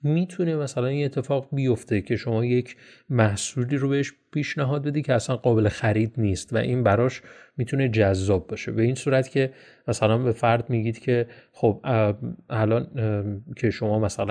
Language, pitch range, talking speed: Persian, 105-140 Hz, 170 wpm